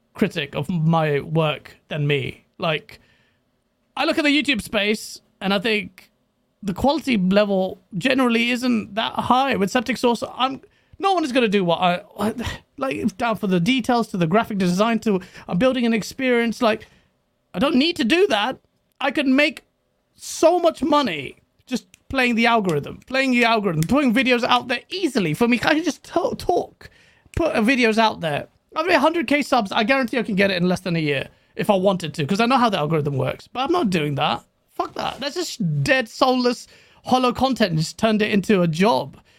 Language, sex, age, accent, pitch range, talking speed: English, male, 30-49, British, 185-250 Hz, 195 wpm